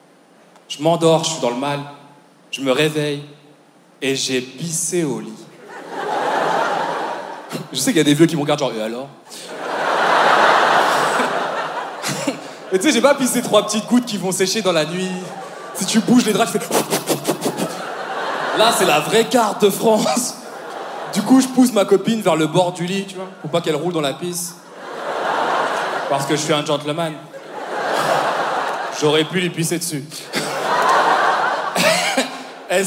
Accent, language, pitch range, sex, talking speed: French, French, 155-200 Hz, male, 165 wpm